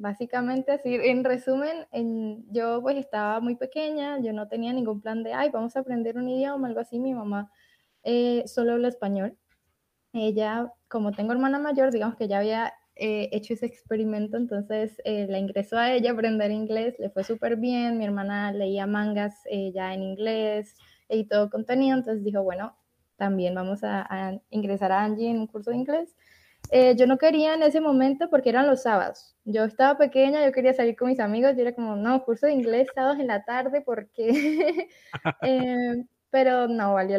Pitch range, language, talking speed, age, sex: 205-260 Hz, Spanish, 190 wpm, 10-29, female